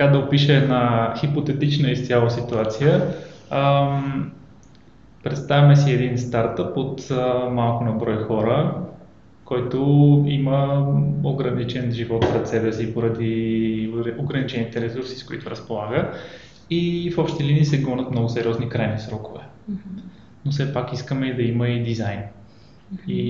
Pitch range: 115-145 Hz